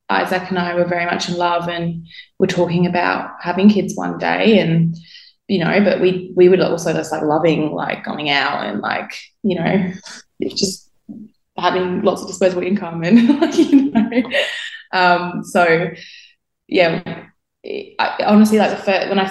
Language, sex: English, female